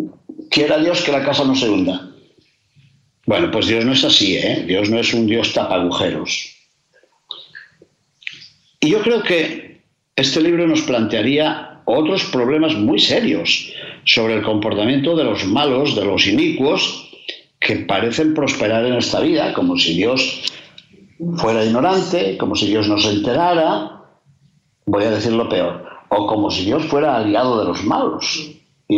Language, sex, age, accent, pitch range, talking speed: Spanish, male, 60-79, Spanish, 115-170 Hz, 155 wpm